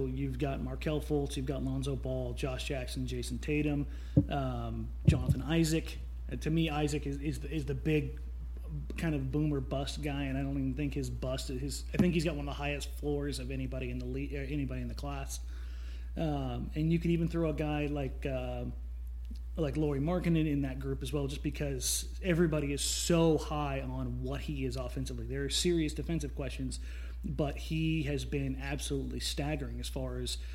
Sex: male